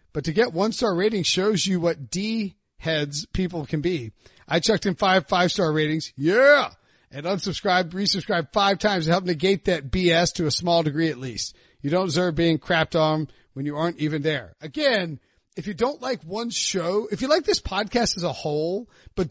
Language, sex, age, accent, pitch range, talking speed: English, male, 40-59, American, 160-215 Hz, 195 wpm